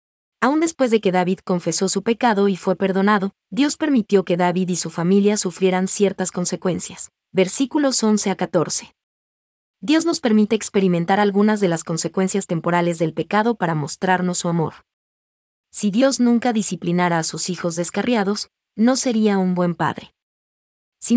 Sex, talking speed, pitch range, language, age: female, 155 wpm, 175-215 Hz, English, 30-49